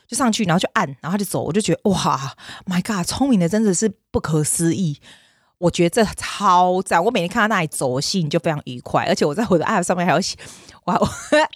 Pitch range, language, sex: 150-205 Hz, Chinese, female